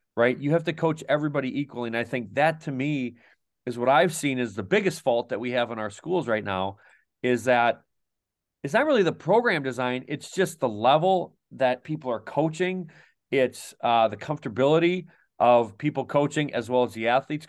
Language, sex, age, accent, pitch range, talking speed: English, male, 40-59, American, 120-150 Hz, 195 wpm